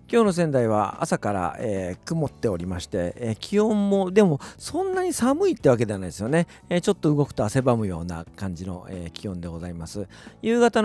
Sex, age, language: male, 50-69, Japanese